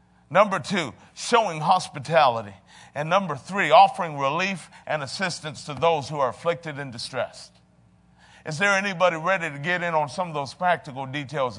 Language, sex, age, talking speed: English, male, 50-69, 160 wpm